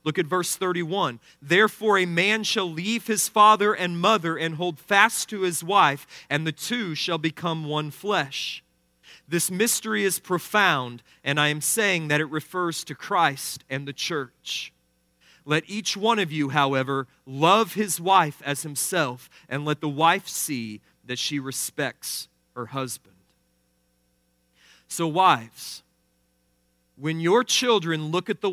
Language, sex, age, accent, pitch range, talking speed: English, male, 40-59, American, 135-185 Hz, 150 wpm